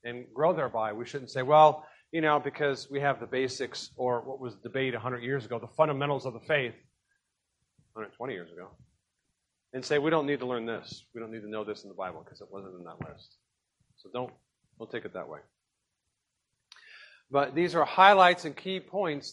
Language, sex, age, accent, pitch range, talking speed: English, male, 40-59, American, 130-175 Hz, 205 wpm